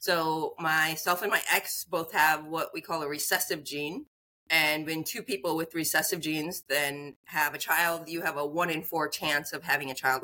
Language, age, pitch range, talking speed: English, 40-59, 150-180 Hz, 205 wpm